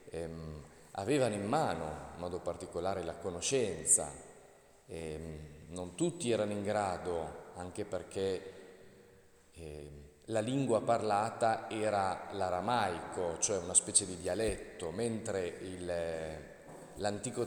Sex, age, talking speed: male, 40-59, 95 wpm